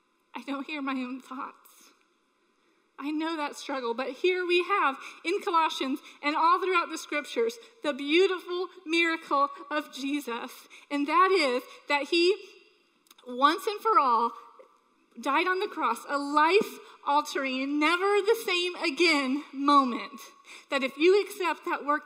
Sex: female